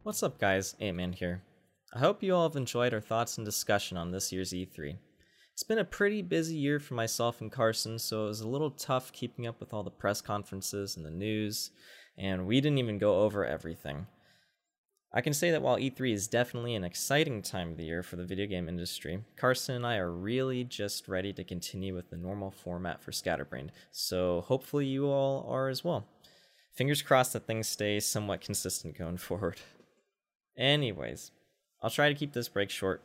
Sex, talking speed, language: male, 200 wpm, English